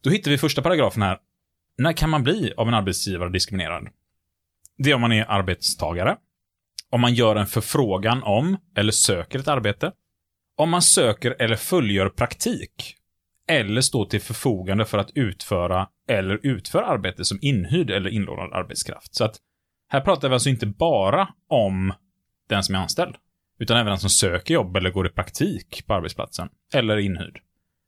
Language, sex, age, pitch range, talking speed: Swedish, male, 30-49, 90-120 Hz, 165 wpm